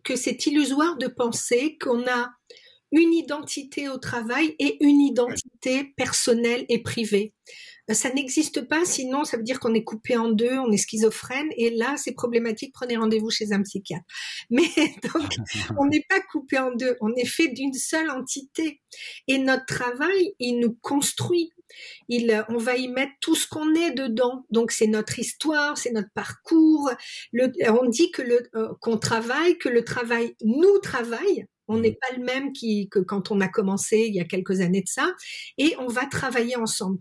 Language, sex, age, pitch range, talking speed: French, female, 50-69, 225-295 Hz, 185 wpm